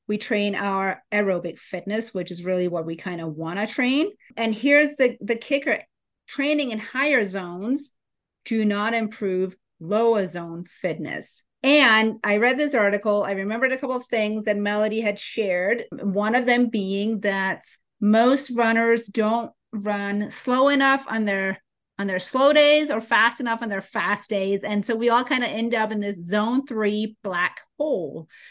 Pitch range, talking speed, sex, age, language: 195-245 Hz, 175 wpm, female, 30-49, English